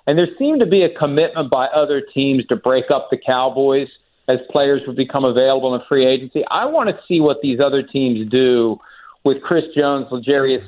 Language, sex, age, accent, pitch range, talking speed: English, male, 50-69, American, 135-175 Hz, 200 wpm